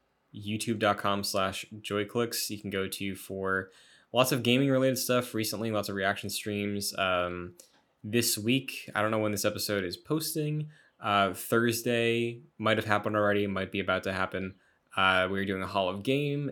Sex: male